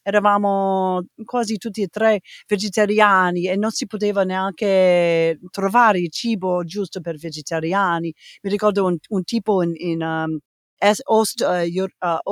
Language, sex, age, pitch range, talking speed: Italian, female, 50-69, 180-230 Hz, 120 wpm